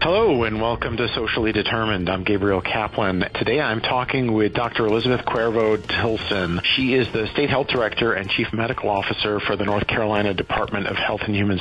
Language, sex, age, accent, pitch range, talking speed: English, male, 40-59, American, 100-125 Hz, 185 wpm